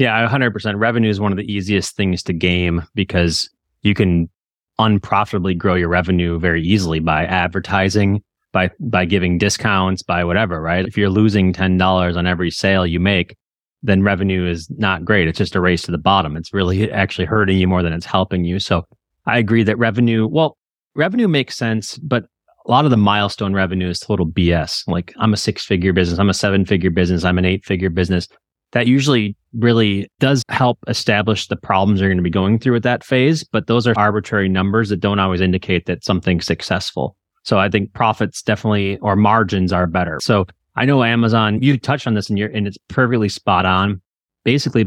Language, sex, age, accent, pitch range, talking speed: English, male, 30-49, American, 95-110 Hz, 195 wpm